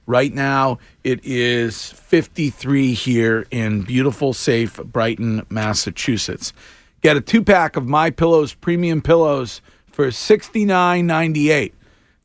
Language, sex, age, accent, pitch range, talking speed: English, male, 40-59, American, 120-155 Hz, 100 wpm